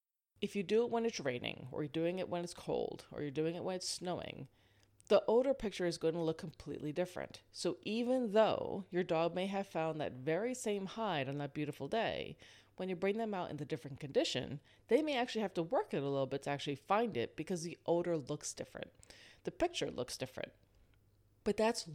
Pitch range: 140-200 Hz